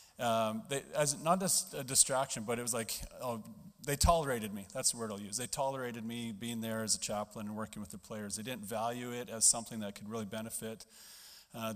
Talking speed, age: 225 wpm, 30-49